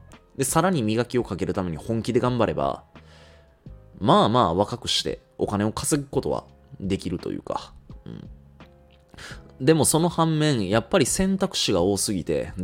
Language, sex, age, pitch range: Japanese, male, 20-39, 90-135 Hz